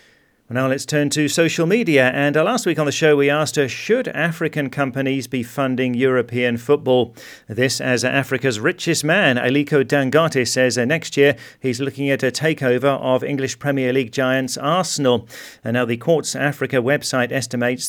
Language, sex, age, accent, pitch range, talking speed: English, male, 40-59, British, 120-145 Hz, 180 wpm